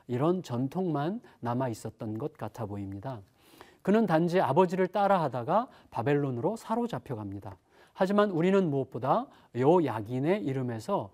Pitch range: 125-205 Hz